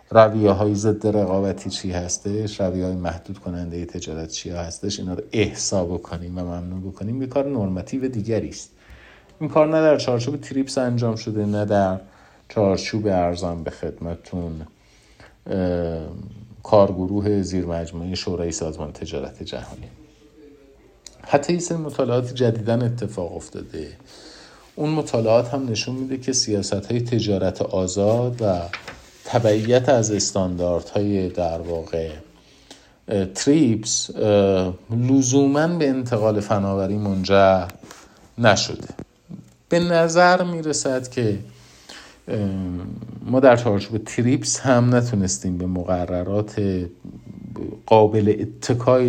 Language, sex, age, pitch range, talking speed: Persian, male, 50-69, 90-120 Hz, 110 wpm